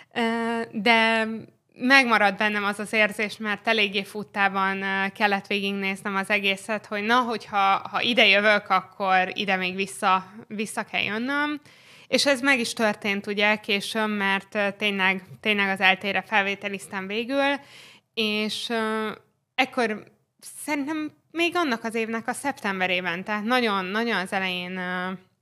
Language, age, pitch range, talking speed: Hungarian, 20-39, 190-220 Hz, 130 wpm